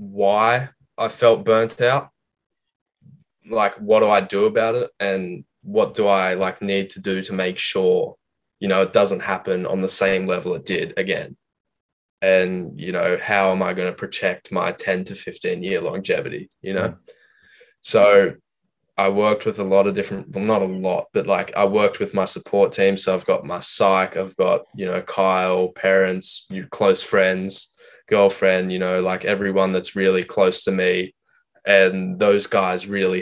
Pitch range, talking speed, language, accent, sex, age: 95-105 Hz, 180 wpm, English, Australian, male, 10-29